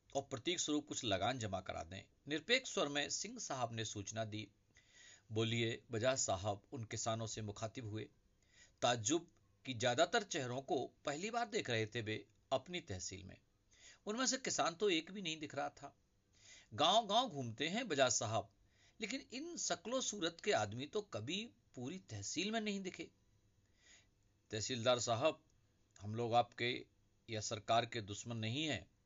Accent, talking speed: native, 155 wpm